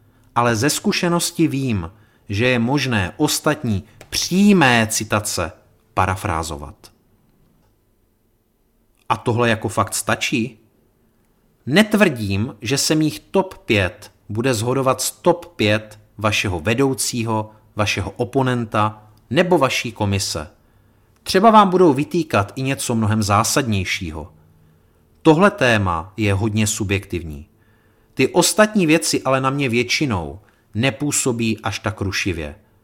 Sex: male